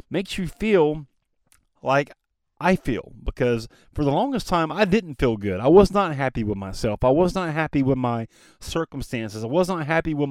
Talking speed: 190 wpm